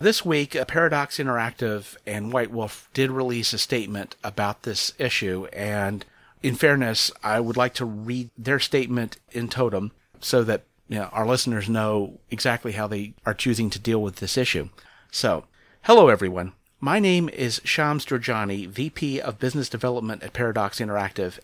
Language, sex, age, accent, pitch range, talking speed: English, male, 40-59, American, 110-140 Hz, 160 wpm